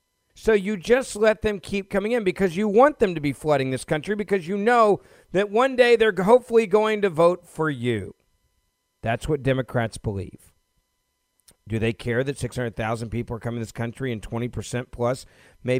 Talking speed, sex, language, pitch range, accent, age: 185 wpm, male, English, 115-170 Hz, American, 50-69